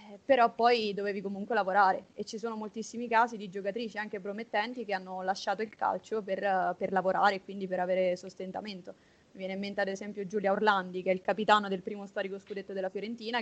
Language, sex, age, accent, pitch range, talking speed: Italian, female, 20-39, native, 195-220 Hz, 200 wpm